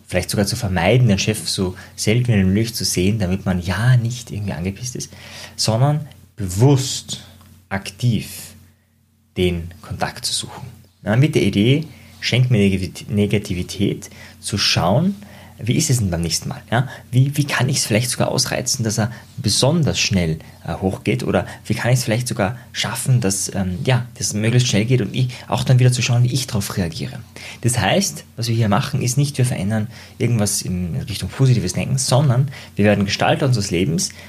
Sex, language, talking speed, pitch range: male, German, 180 wpm, 100-125 Hz